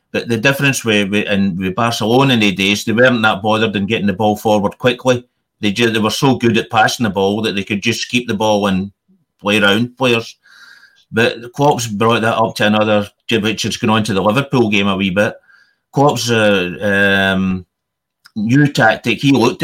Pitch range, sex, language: 105-125 Hz, male, English